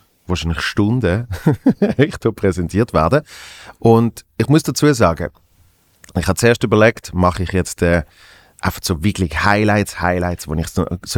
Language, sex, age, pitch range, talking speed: German, male, 30-49, 90-110 Hz, 145 wpm